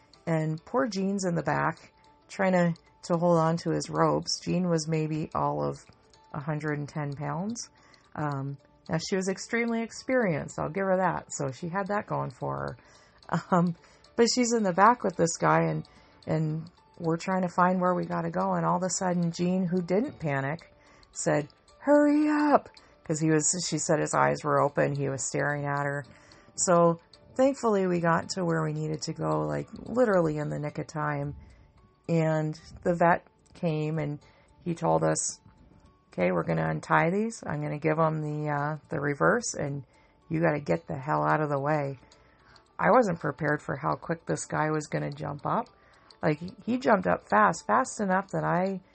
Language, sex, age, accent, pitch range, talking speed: English, female, 40-59, American, 150-185 Hz, 190 wpm